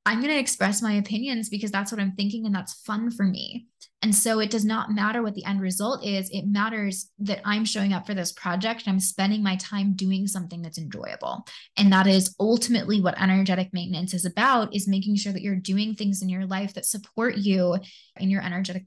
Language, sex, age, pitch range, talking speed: English, female, 20-39, 190-225 Hz, 225 wpm